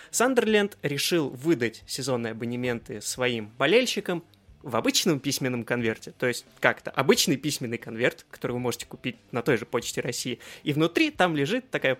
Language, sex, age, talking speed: Russian, male, 20-39, 155 wpm